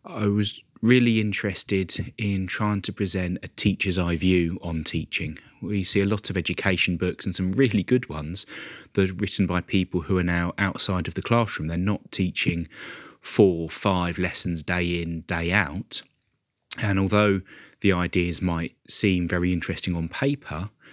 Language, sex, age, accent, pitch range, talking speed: English, male, 30-49, British, 85-105 Hz, 170 wpm